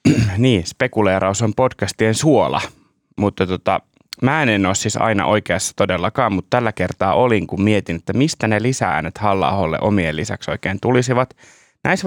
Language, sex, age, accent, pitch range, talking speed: Finnish, male, 30-49, native, 100-125 Hz, 150 wpm